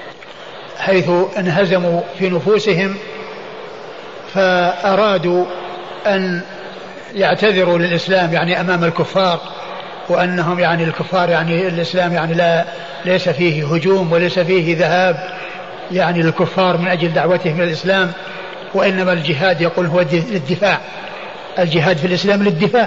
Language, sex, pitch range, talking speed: Arabic, male, 180-215 Hz, 105 wpm